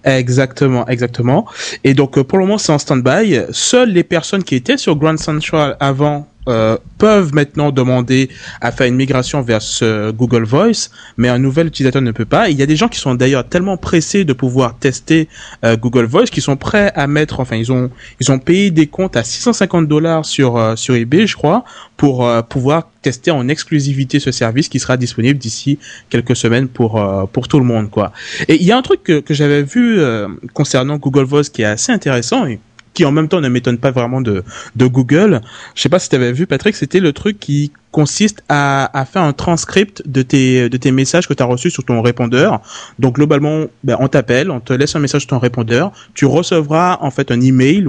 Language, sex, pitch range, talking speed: French, male, 120-150 Hz, 220 wpm